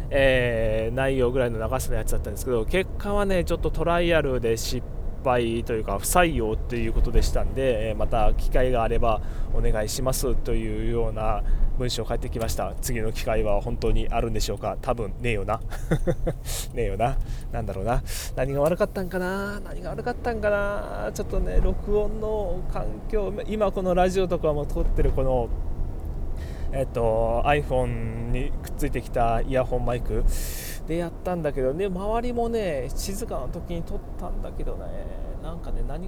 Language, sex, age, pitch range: Japanese, male, 20-39, 115-170 Hz